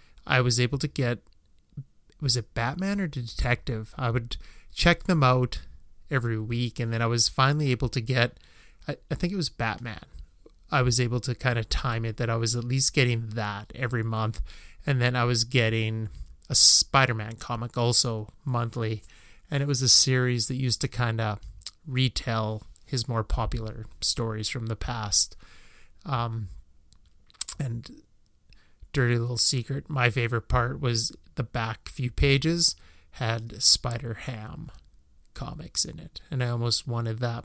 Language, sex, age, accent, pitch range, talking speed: English, male, 30-49, American, 110-130 Hz, 160 wpm